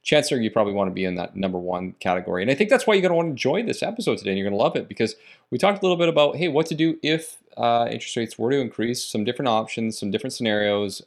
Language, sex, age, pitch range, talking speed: English, male, 30-49, 105-150 Hz, 300 wpm